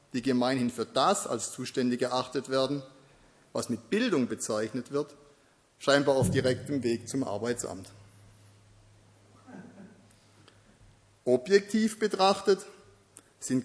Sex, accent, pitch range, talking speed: male, German, 115-145 Hz, 95 wpm